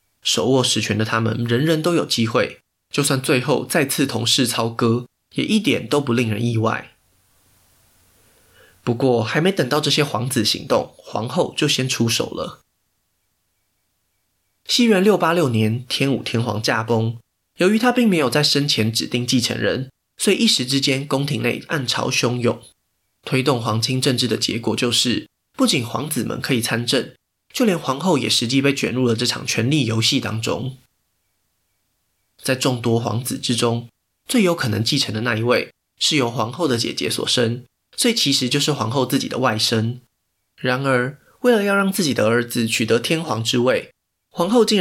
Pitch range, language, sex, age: 115-140 Hz, Chinese, male, 20-39